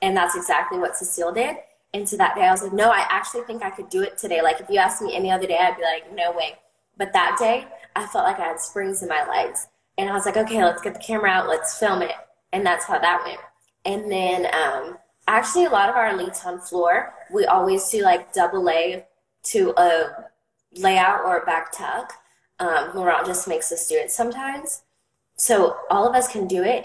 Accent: American